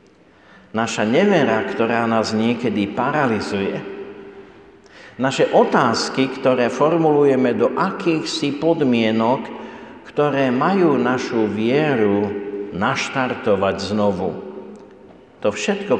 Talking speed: 80 wpm